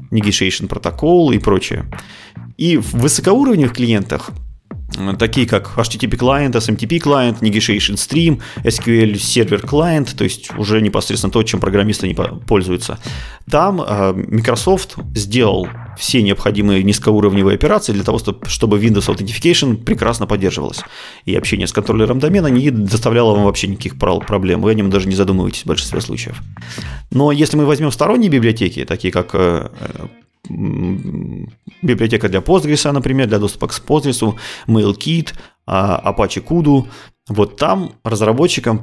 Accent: native